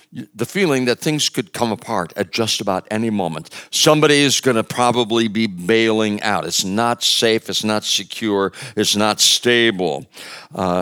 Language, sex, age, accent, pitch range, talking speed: English, male, 60-79, American, 95-130 Hz, 165 wpm